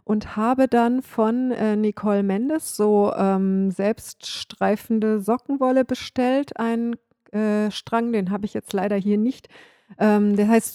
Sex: female